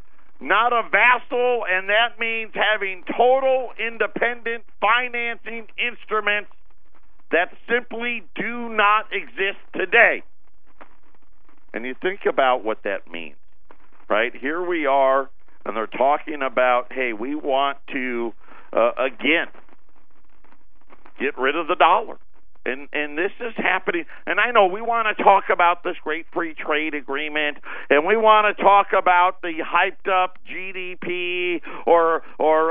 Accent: American